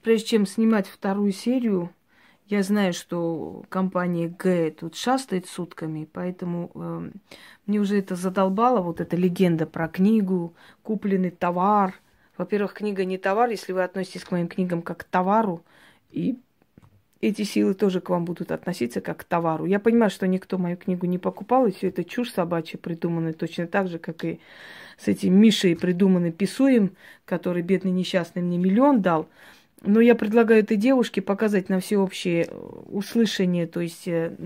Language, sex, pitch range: Russian, female, 175-205 Hz